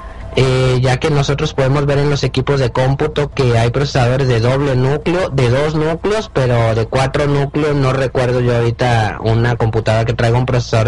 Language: Spanish